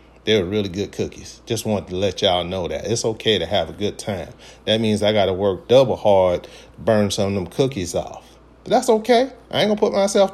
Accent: American